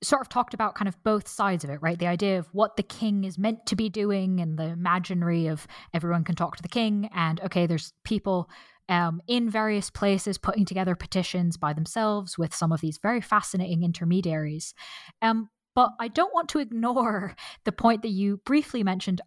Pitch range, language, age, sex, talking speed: 175-215 Hz, English, 10-29, female, 200 wpm